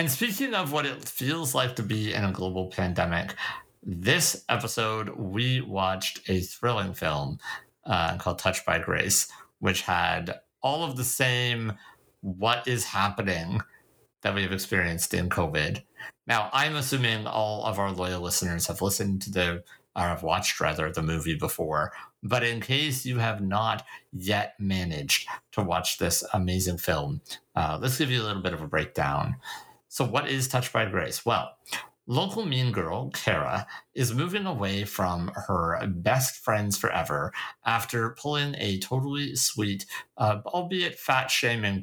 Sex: male